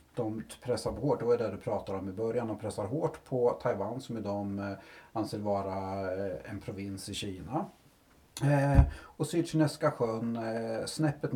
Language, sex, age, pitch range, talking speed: English, male, 30-49, 100-125 Hz, 150 wpm